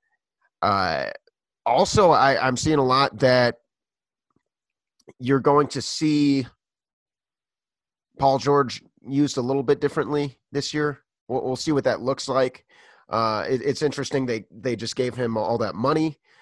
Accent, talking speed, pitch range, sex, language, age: American, 145 wpm, 120-150 Hz, male, English, 30-49